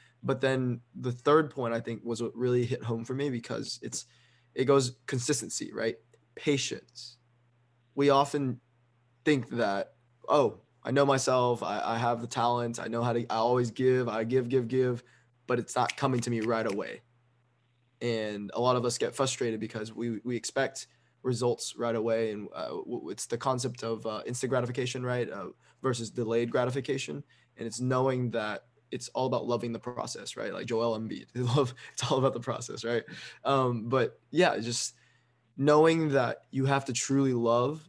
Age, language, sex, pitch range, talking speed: 20-39, English, male, 115-130 Hz, 180 wpm